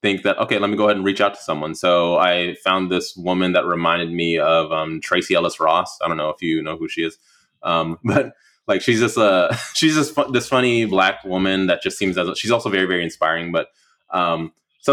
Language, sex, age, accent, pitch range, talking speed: English, male, 20-39, American, 90-120 Hz, 235 wpm